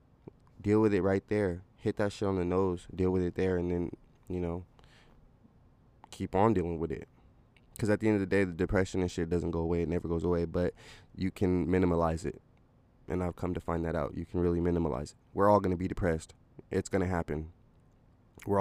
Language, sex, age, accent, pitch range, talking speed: English, male, 20-39, American, 85-100 Hz, 225 wpm